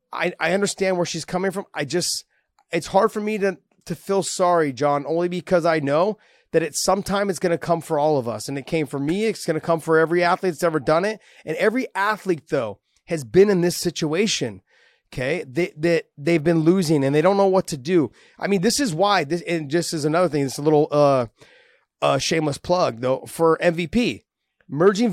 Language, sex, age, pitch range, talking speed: English, male, 30-49, 155-195 Hz, 235 wpm